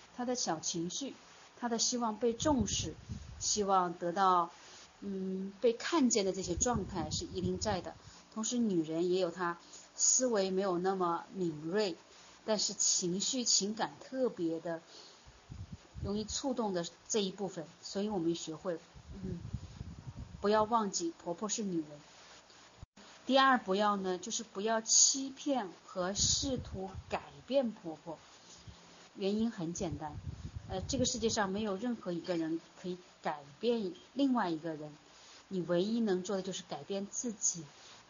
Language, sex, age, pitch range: Chinese, female, 30-49, 175-235 Hz